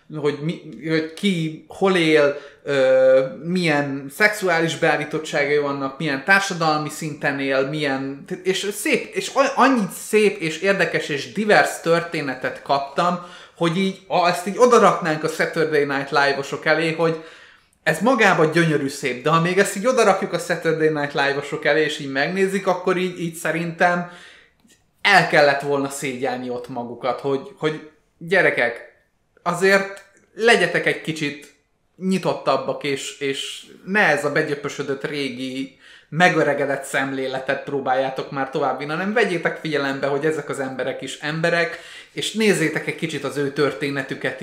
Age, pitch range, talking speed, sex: 30-49, 140-175 Hz, 140 wpm, male